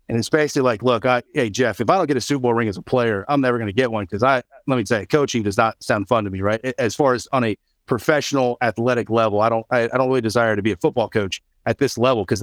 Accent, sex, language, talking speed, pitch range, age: American, male, English, 300 wpm, 115-165 Hz, 40-59